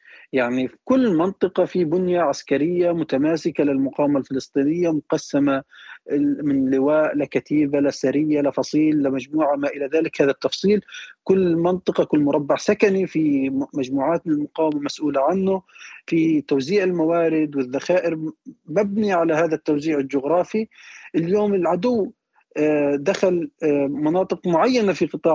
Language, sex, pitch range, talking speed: Arabic, male, 145-185 Hz, 110 wpm